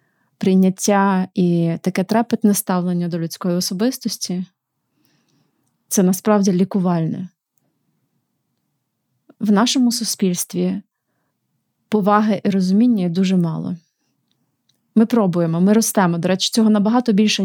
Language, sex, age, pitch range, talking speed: Ukrainian, female, 30-49, 185-215 Hz, 95 wpm